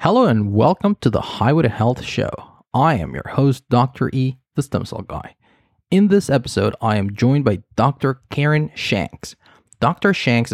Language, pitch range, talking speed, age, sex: English, 105-140 Hz, 170 wpm, 30-49, male